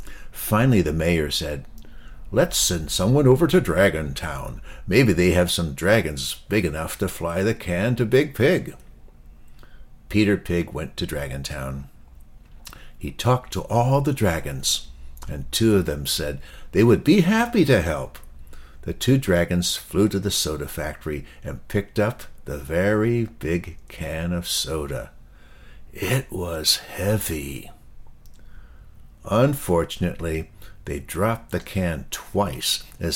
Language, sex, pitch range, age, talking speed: English, male, 75-120 Hz, 60-79, 130 wpm